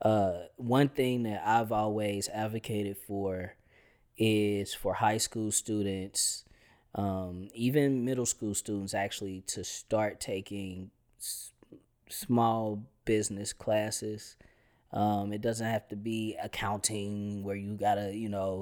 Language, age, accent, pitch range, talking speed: English, 20-39, American, 100-115 Hz, 125 wpm